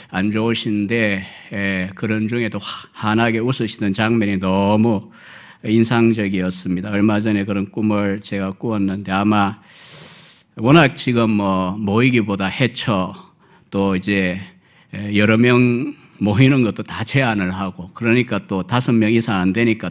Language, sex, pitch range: Korean, male, 100-115 Hz